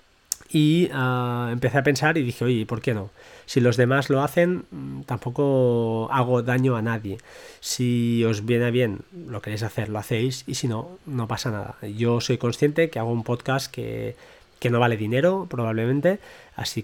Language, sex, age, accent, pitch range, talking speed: Spanish, male, 20-39, Spanish, 115-140 Hz, 175 wpm